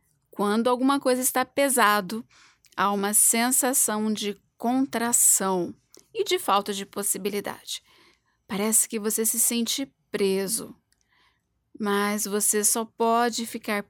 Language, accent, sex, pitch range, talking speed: Portuguese, Brazilian, female, 205-235 Hz, 110 wpm